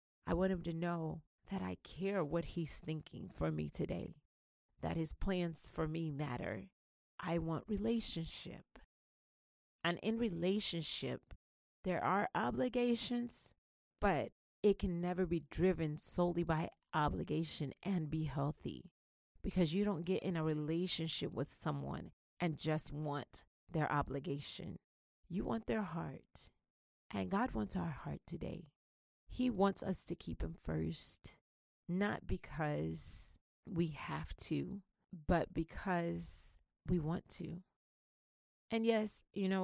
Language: English